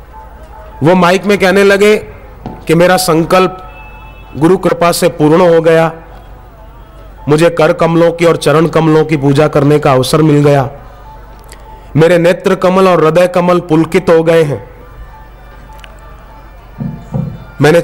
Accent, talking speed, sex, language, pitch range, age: native, 130 wpm, male, Hindi, 145-180 Hz, 40-59